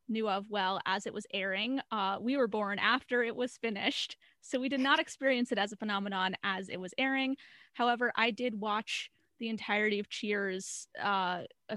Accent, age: American, 20-39